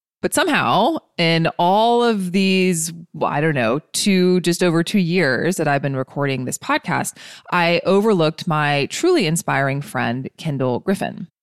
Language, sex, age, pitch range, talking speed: English, female, 20-39, 145-190 Hz, 150 wpm